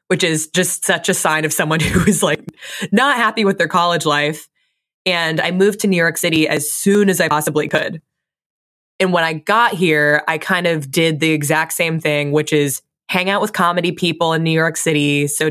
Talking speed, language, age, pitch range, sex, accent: 215 wpm, English, 20-39, 155-185 Hz, female, American